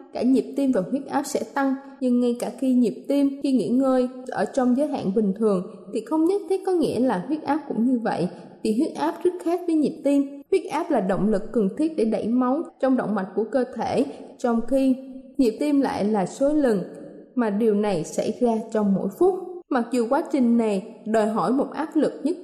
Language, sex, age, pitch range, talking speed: Vietnamese, female, 20-39, 220-275 Hz, 230 wpm